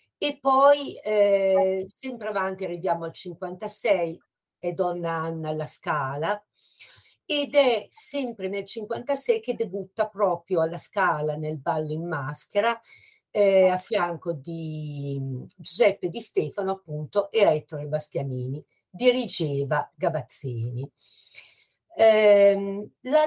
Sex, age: female, 50-69